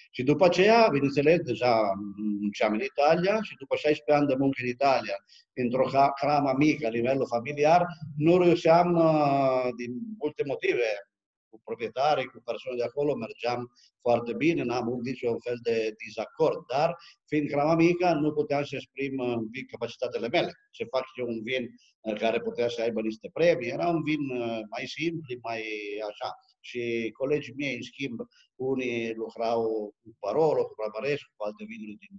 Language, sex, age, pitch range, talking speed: Romanian, male, 50-69, 120-165 Hz, 170 wpm